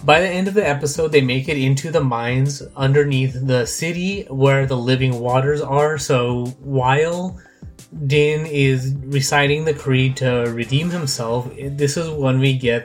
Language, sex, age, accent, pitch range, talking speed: English, male, 20-39, American, 130-150 Hz, 165 wpm